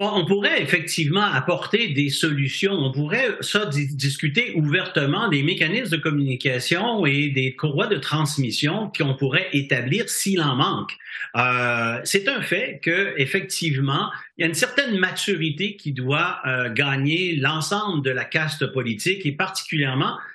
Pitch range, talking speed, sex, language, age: 130-170 Hz, 145 wpm, male, French, 50-69